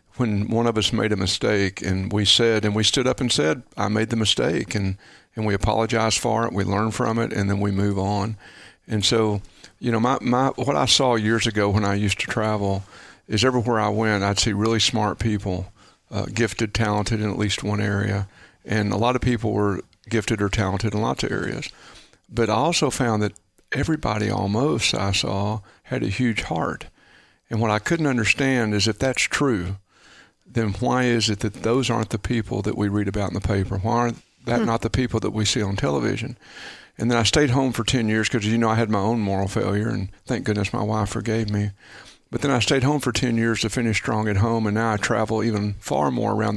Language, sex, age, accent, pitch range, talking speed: English, male, 50-69, American, 105-120 Hz, 225 wpm